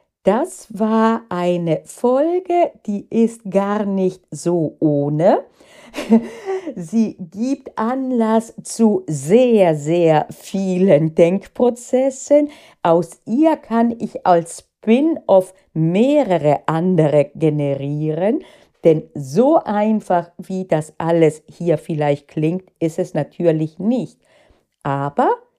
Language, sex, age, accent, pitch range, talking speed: German, female, 40-59, German, 160-235 Hz, 95 wpm